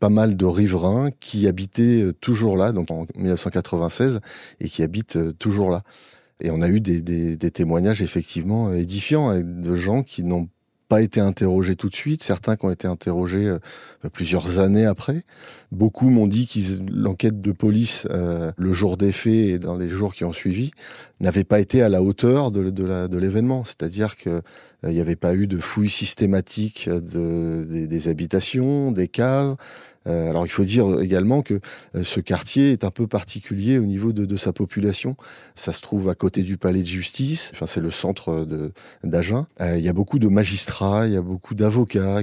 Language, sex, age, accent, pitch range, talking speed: French, male, 30-49, French, 90-110 Hz, 195 wpm